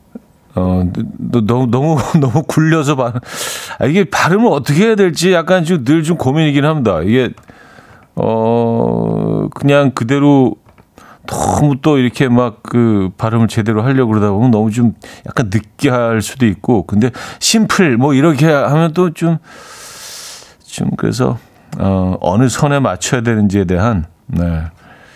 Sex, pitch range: male, 100-140 Hz